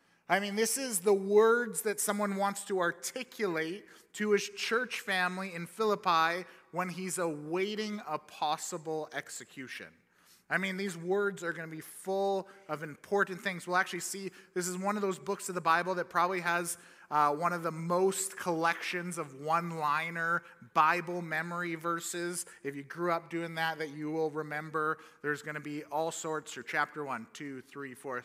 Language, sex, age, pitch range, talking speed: English, male, 30-49, 145-185 Hz, 175 wpm